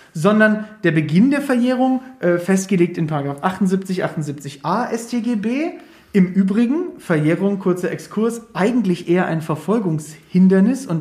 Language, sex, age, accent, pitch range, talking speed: German, male, 40-59, German, 170-235 Hz, 115 wpm